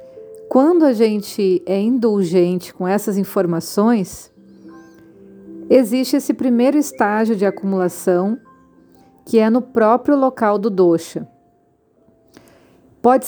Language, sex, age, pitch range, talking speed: Portuguese, female, 40-59, 190-250 Hz, 100 wpm